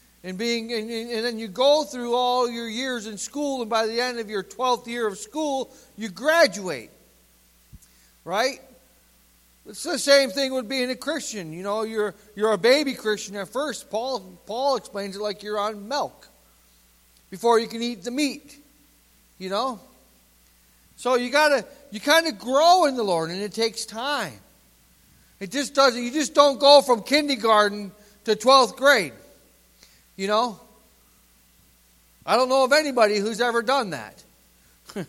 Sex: male